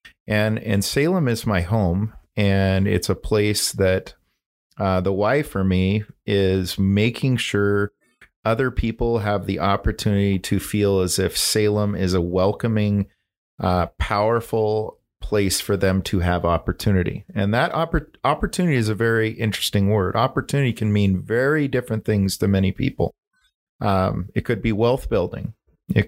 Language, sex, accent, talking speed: English, male, American, 145 wpm